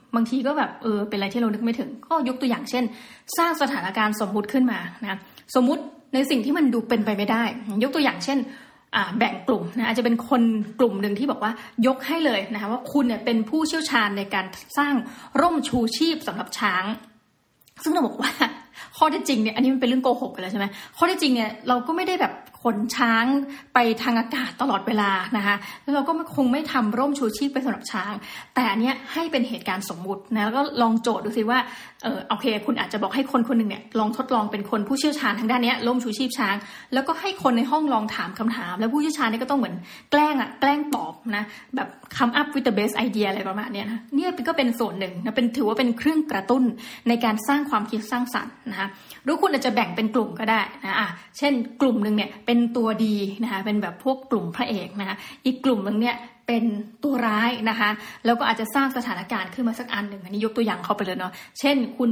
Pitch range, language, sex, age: 215-265 Hz, Thai, female, 20-39